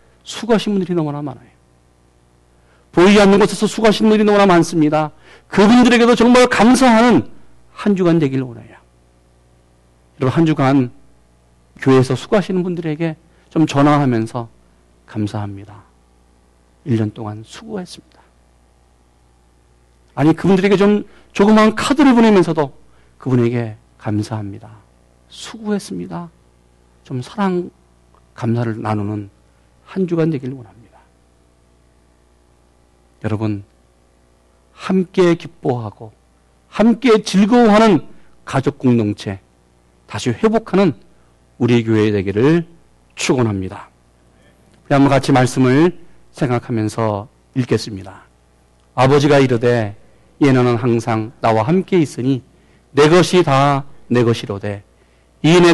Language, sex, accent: Korean, male, native